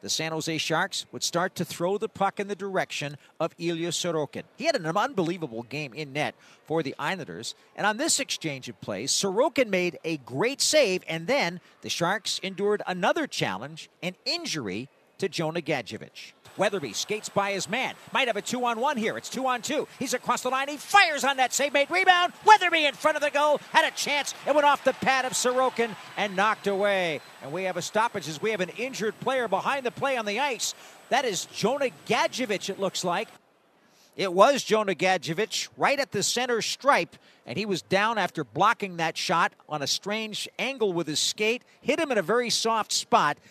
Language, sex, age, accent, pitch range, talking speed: English, male, 50-69, American, 155-225 Hz, 200 wpm